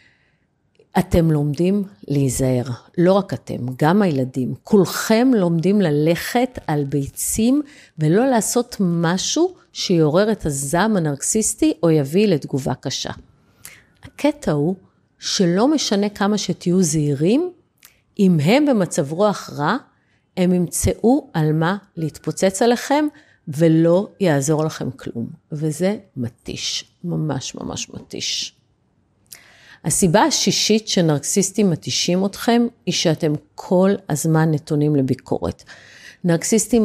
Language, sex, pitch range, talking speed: Hebrew, female, 155-215 Hz, 105 wpm